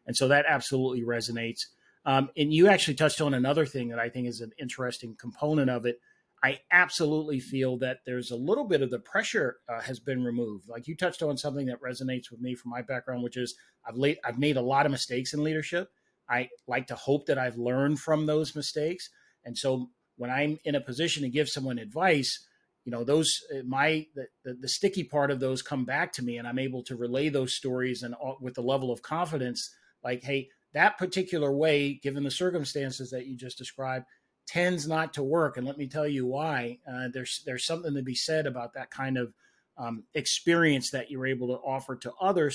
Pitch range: 125-150 Hz